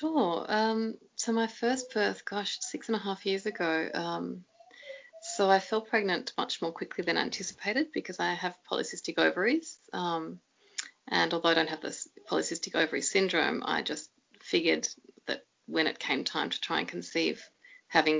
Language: English